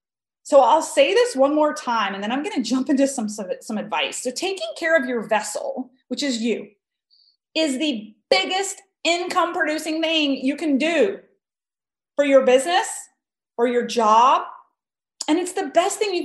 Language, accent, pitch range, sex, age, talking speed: English, American, 235-315 Hz, female, 30-49, 170 wpm